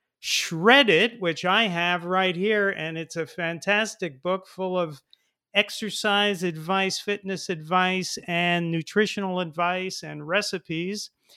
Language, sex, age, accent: English, male, 40-59, American